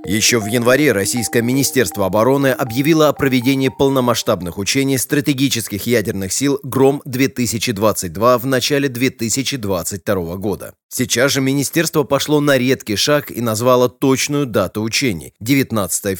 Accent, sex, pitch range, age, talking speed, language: native, male, 110-135 Hz, 30-49, 120 wpm, Russian